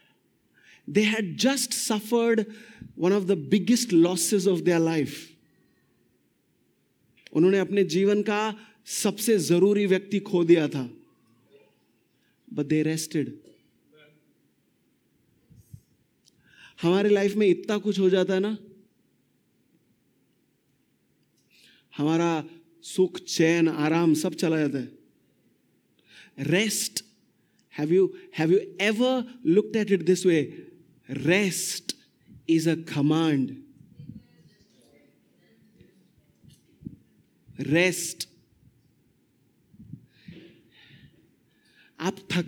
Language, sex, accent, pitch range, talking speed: English, male, Indian, 165-215 Hz, 75 wpm